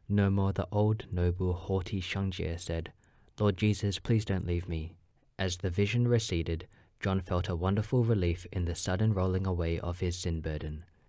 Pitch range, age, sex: 90-105 Hz, 20-39, male